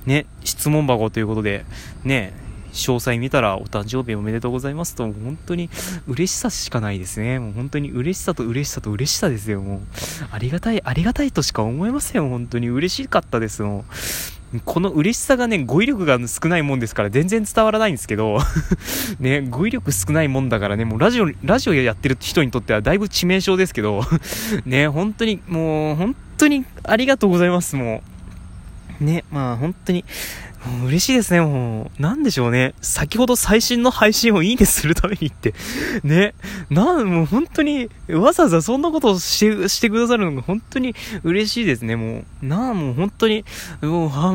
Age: 20-39